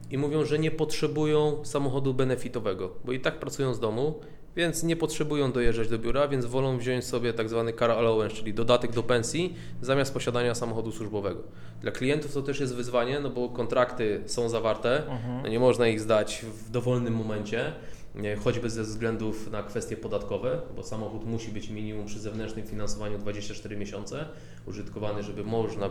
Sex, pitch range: male, 110-140 Hz